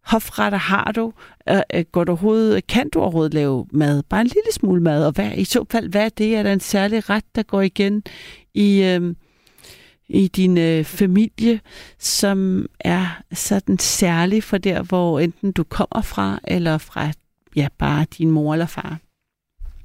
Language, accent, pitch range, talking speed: Danish, native, 160-210 Hz, 170 wpm